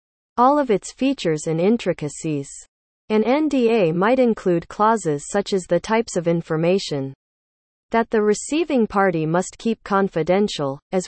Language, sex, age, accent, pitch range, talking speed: English, female, 40-59, American, 160-230 Hz, 135 wpm